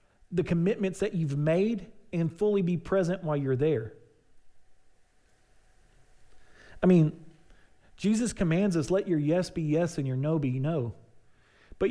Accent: American